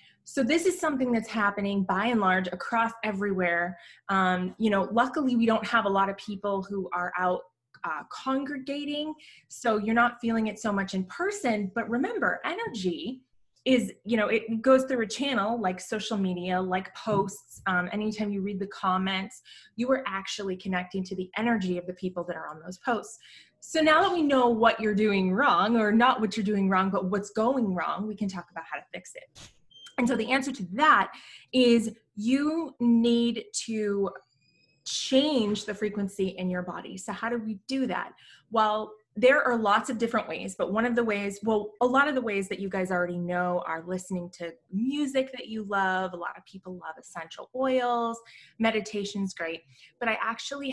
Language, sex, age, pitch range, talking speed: English, female, 20-39, 185-240 Hz, 195 wpm